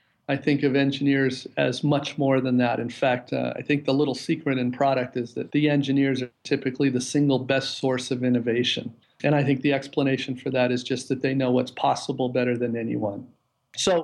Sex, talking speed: male, 210 wpm